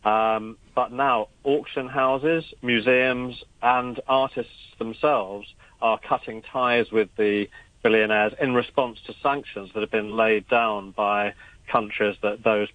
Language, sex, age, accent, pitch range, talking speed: English, male, 40-59, British, 110-125 Hz, 130 wpm